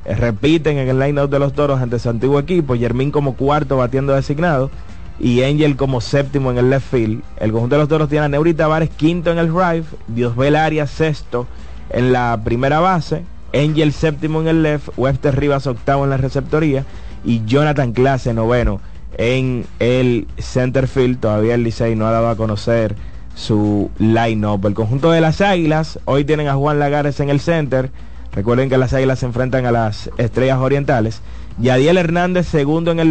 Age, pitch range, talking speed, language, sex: 30-49, 120-150 Hz, 185 wpm, Spanish, male